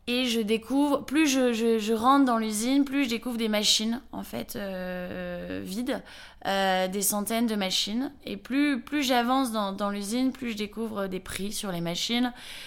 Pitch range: 190-230 Hz